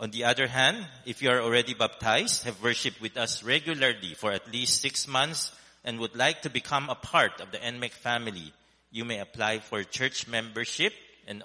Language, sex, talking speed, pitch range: English, male, 195 wpm, 95-125 Hz